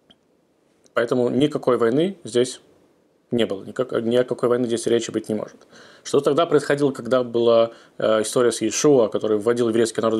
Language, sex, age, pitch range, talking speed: Russian, male, 20-39, 115-140 Hz, 160 wpm